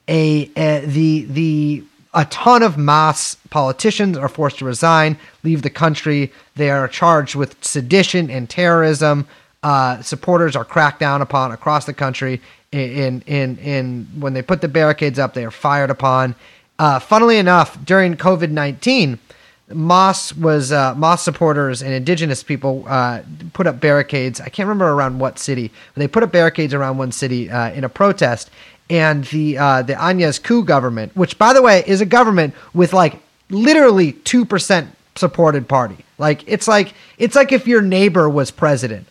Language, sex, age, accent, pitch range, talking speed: English, male, 30-49, American, 130-170 Hz, 170 wpm